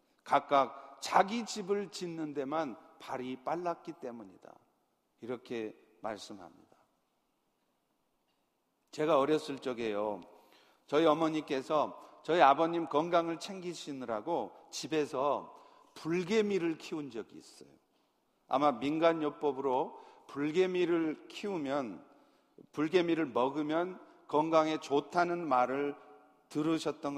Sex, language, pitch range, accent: male, Korean, 145-220 Hz, native